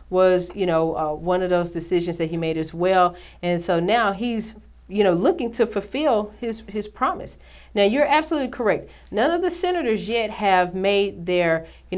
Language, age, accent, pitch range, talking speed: English, 40-59, American, 165-200 Hz, 190 wpm